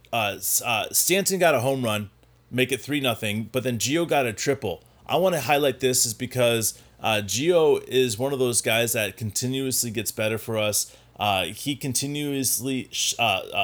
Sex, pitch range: male, 115-135 Hz